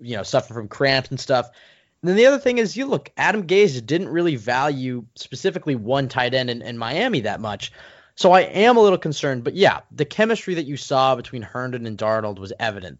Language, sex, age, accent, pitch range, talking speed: English, male, 20-39, American, 115-145 Hz, 220 wpm